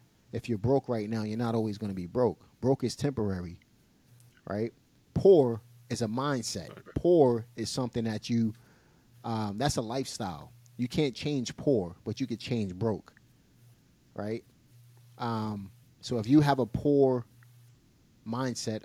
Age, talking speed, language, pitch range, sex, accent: 30-49, 150 wpm, English, 105-125 Hz, male, American